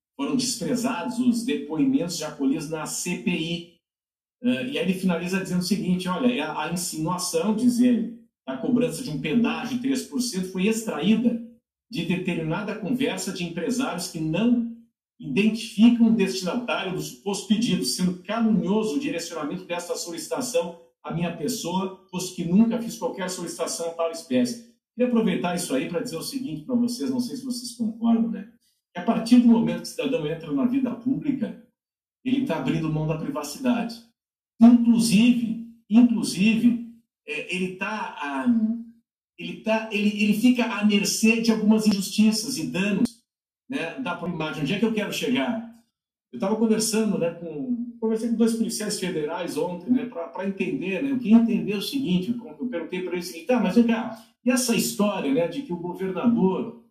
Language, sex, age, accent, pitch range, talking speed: Portuguese, male, 50-69, Brazilian, 185-240 Hz, 160 wpm